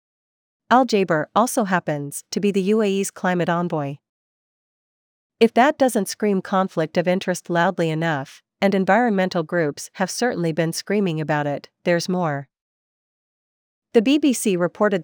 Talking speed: 130 wpm